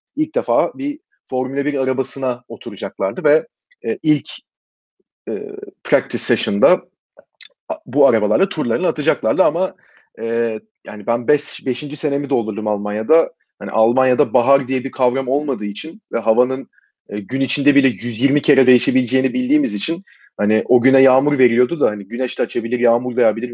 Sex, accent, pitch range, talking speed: male, native, 120-155 Hz, 135 wpm